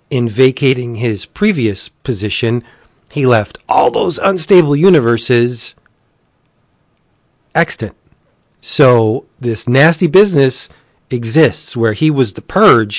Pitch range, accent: 105-130 Hz, American